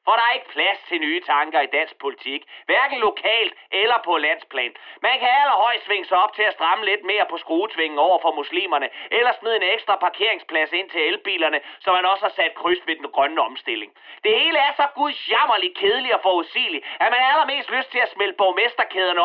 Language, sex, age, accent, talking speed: Danish, male, 30-49, native, 205 wpm